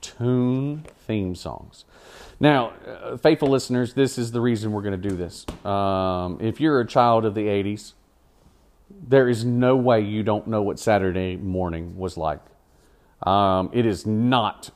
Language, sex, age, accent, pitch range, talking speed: English, male, 40-59, American, 95-120 Hz, 165 wpm